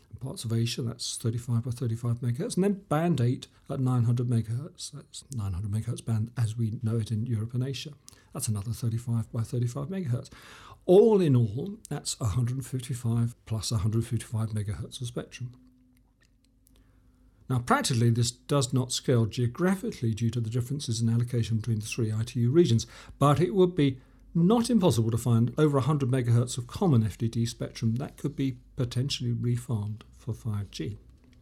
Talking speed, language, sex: 160 wpm, English, male